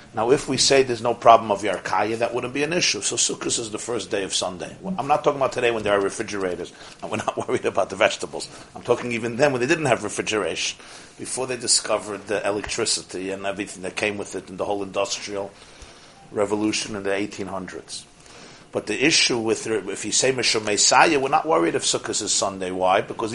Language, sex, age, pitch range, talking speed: English, male, 50-69, 105-130 Hz, 215 wpm